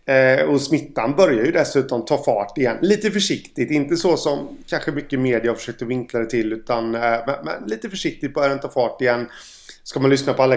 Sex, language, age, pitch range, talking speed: male, Swedish, 30-49, 120-150 Hz, 200 wpm